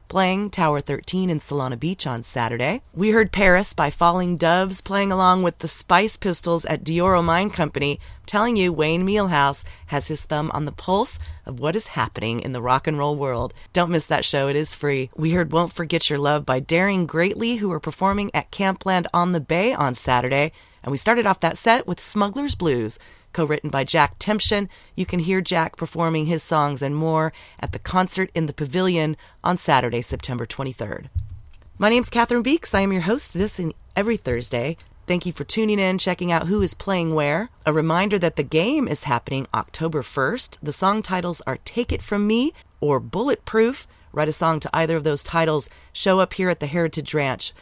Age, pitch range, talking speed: 30-49, 145-190 Hz, 200 wpm